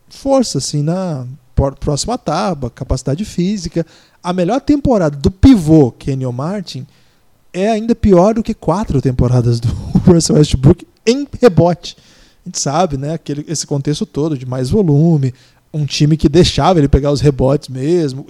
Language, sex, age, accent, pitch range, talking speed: Portuguese, male, 20-39, Brazilian, 140-195 Hz, 150 wpm